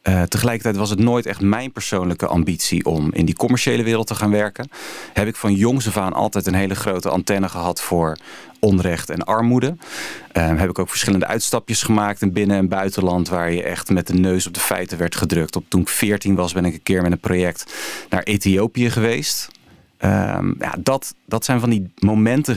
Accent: Dutch